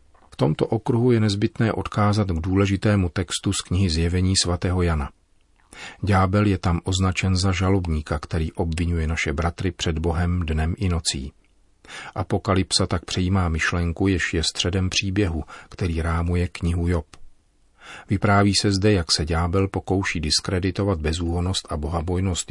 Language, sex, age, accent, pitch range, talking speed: Czech, male, 40-59, native, 85-100 Hz, 140 wpm